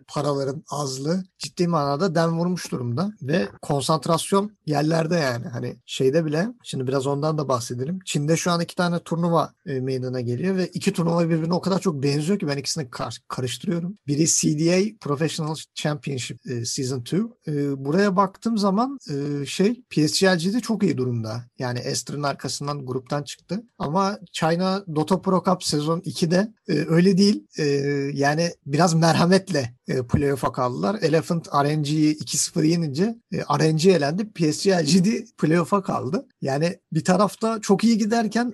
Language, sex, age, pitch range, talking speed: Turkish, male, 50-69, 140-190 Hz, 150 wpm